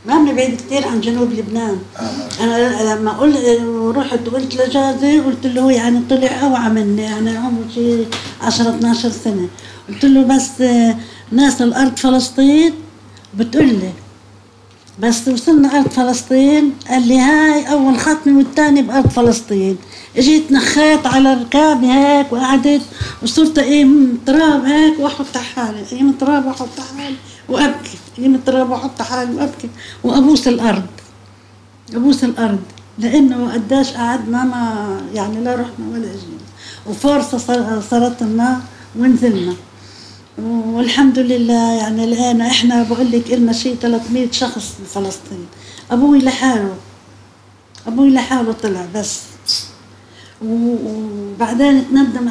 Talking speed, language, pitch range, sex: 120 wpm, English, 225-270 Hz, female